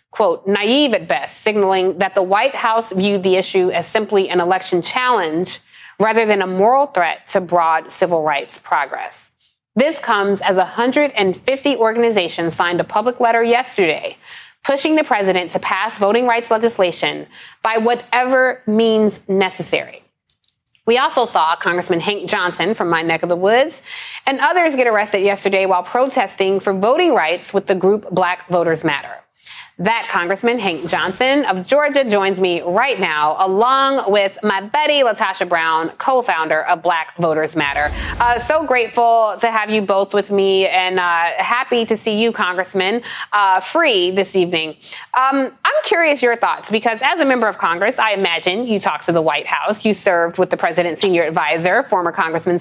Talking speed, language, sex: 165 wpm, English, female